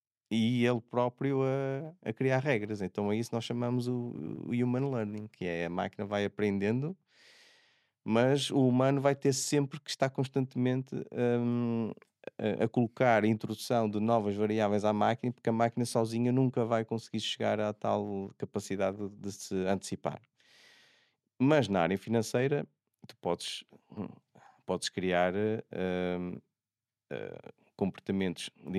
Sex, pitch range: male, 95-120 Hz